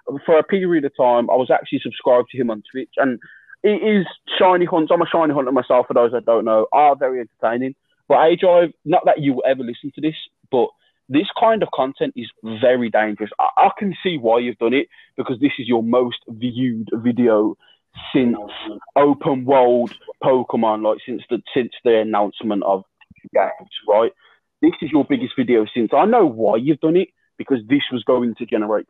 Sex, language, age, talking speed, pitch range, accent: male, English, 20-39, 195 wpm, 120-190 Hz, British